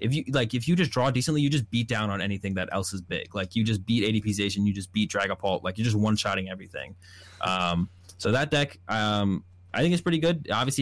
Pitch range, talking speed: 95-120 Hz, 245 wpm